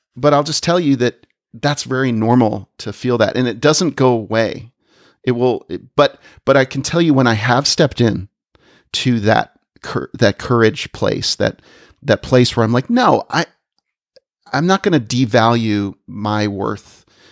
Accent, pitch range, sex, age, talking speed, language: American, 110-140 Hz, male, 40-59, 180 wpm, English